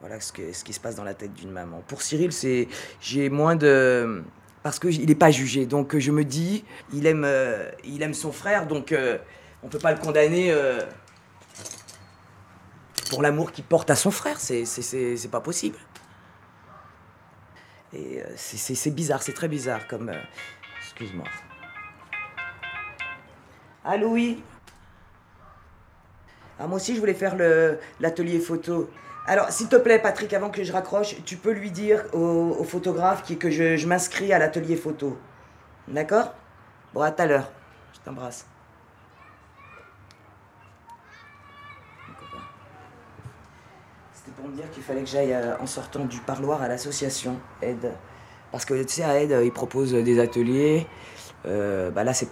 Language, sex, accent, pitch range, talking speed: French, female, French, 105-165 Hz, 160 wpm